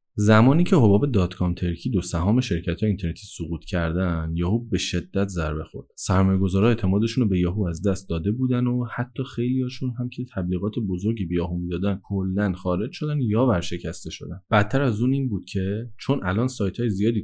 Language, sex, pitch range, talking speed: Persian, male, 90-115 Hz, 185 wpm